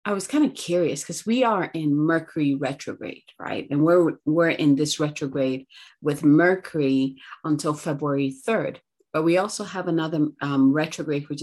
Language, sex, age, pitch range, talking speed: English, female, 30-49, 140-170 Hz, 165 wpm